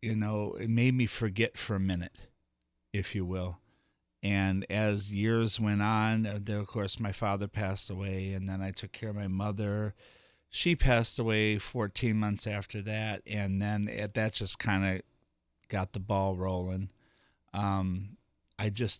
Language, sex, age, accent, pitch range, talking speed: English, male, 40-59, American, 95-105 Hz, 160 wpm